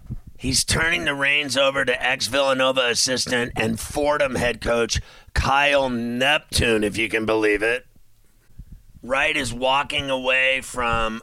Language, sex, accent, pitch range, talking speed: English, male, American, 115-135 Hz, 130 wpm